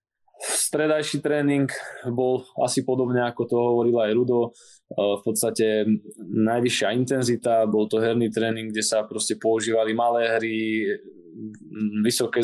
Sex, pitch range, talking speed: male, 110-120 Hz, 120 wpm